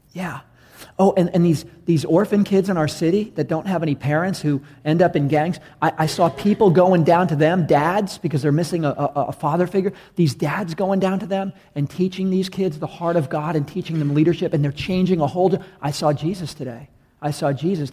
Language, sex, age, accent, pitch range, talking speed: English, male, 40-59, American, 145-180 Hz, 230 wpm